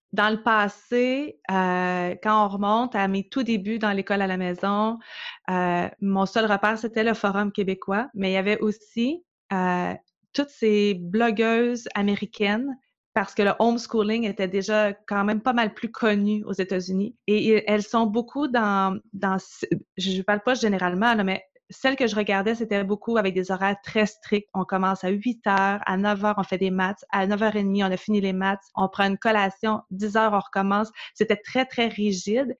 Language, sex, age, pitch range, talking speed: French, female, 30-49, 195-225 Hz, 190 wpm